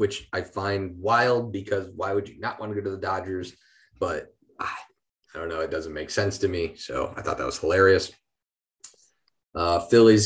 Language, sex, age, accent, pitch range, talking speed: English, male, 20-39, American, 85-105 Hz, 195 wpm